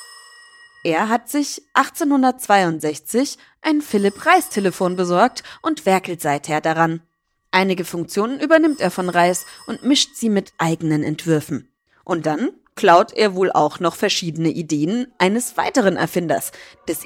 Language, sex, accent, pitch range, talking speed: German, female, German, 160-245 Hz, 130 wpm